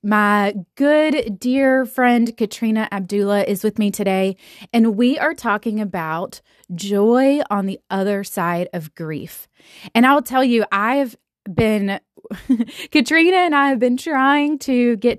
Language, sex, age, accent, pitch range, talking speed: English, female, 20-39, American, 190-245 Hz, 140 wpm